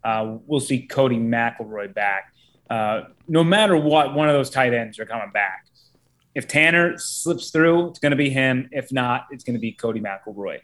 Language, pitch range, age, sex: English, 125-150 Hz, 30-49, male